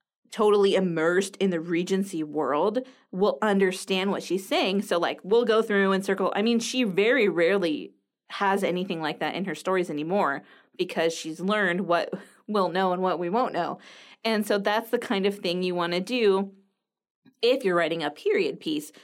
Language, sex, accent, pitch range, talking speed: English, female, American, 175-240 Hz, 185 wpm